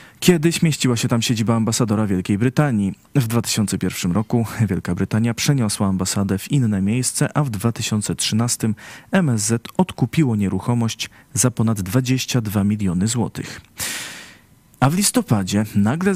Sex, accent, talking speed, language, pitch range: male, native, 125 wpm, Polish, 105-140 Hz